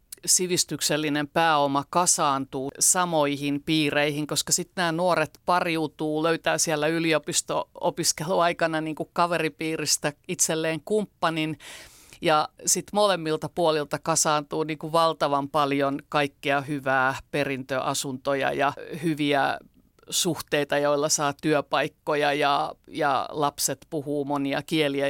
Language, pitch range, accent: Finnish, 140-160 Hz, native